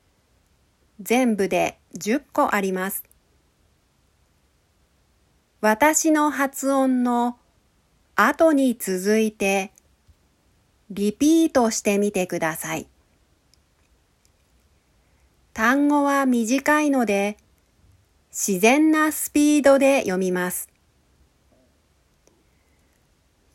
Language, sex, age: Japanese, female, 40-59